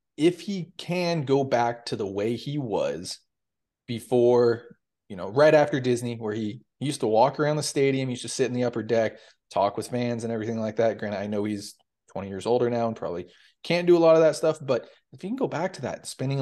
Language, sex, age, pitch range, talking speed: English, male, 30-49, 110-135 Hz, 235 wpm